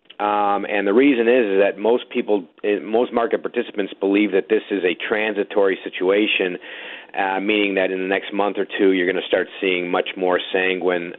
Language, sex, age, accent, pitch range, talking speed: English, male, 40-59, American, 100-155 Hz, 195 wpm